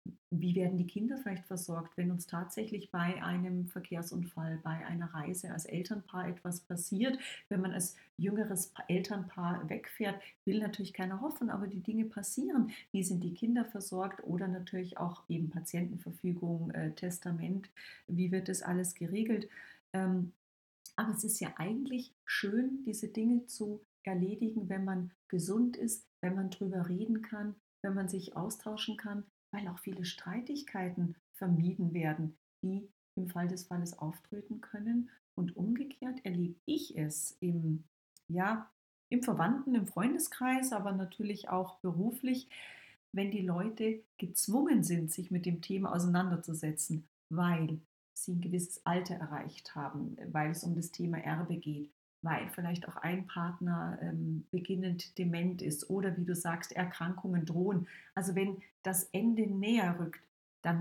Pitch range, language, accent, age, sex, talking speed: 175-210 Hz, German, German, 40-59, female, 145 wpm